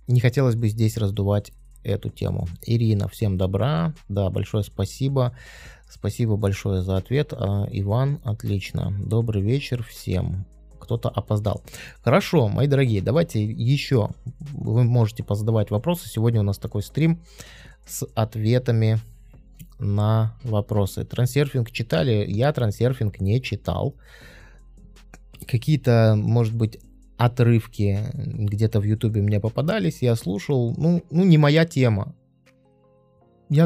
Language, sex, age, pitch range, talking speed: Russian, male, 20-39, 105-135 Hz, 115 wpm